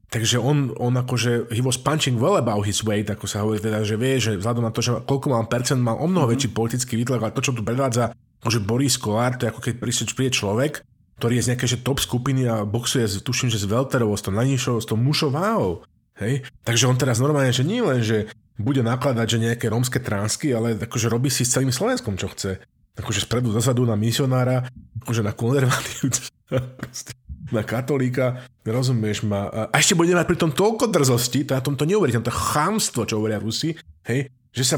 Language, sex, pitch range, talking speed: Slovak, male, 115-140 Hz, 210 wpm